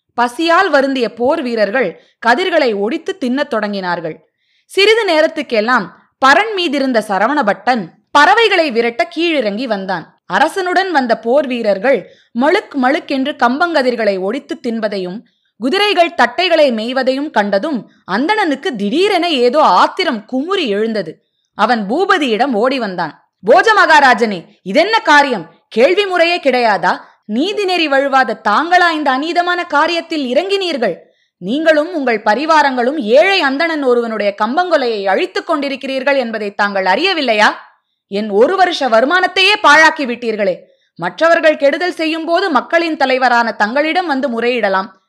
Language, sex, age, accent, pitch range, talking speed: Tamil, female, 20-39, native, 225-330 Hz, 105 wpm